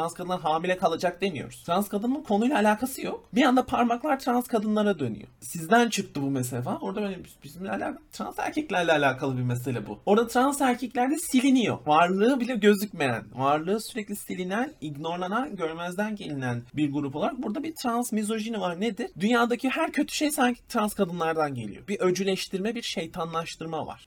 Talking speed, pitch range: 160 wpm, 155-230 Hz